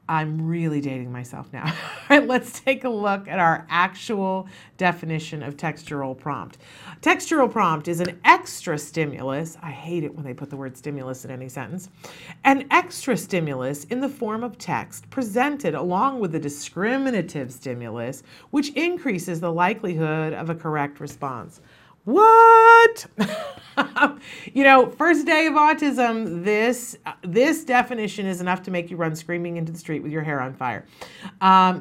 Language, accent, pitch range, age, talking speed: English, American, 155-225 Hz, 40-59, 155 wpm